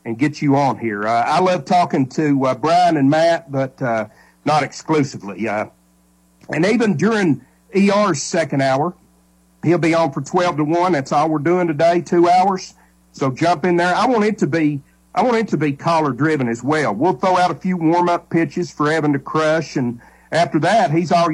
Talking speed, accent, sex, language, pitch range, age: 200 wpm, American, male, English, 125-175 Hz, 50-69